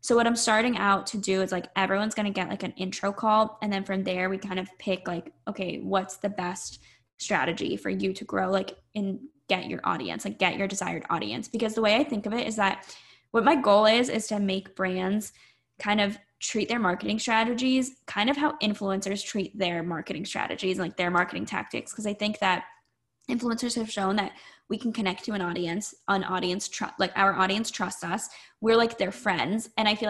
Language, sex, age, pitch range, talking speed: English, female, 10-29, 190-220 Hz, 215 wpm